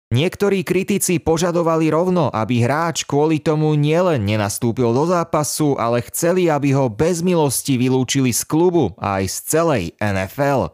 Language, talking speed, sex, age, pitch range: Slovak, 145 wpm, male, 30-49, 115-160 Hz